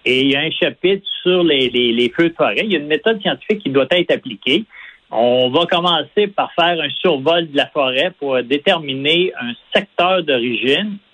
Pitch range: 130-180 Hz